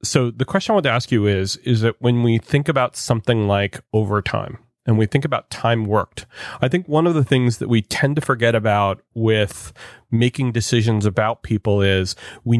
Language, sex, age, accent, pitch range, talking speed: English, male, 30-49, American, 105-130 Hz, 205 wpm